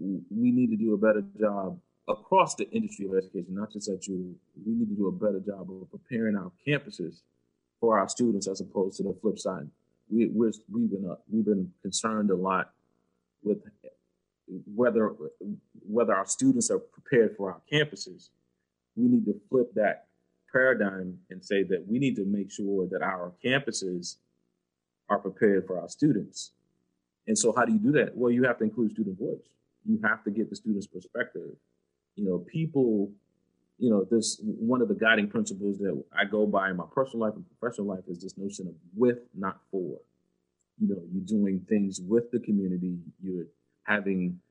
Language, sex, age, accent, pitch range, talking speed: English, male, 30-49, American, 90-120 Hz, 185 wpm